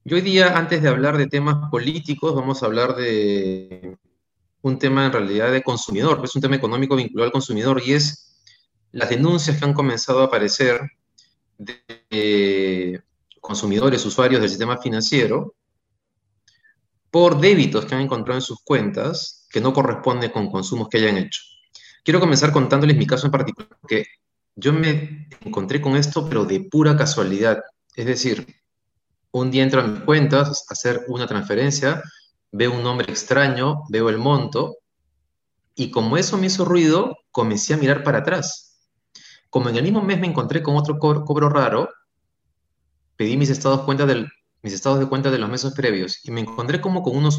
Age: 30-49